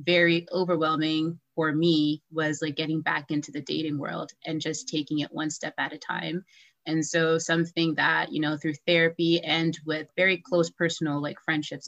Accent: American